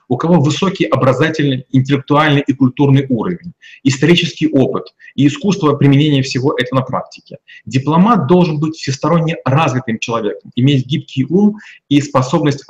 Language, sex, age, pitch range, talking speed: Russian, male, 30-49, 130-170 Hz, 130 wpm